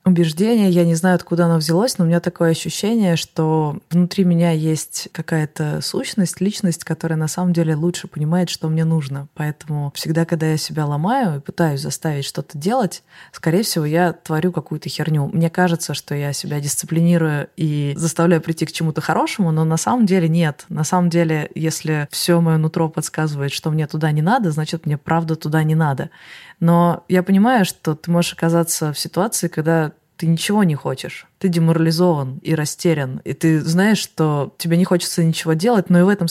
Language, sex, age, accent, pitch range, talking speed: Russian, female, 20-39, native, 155-175 Hz, 185 wpm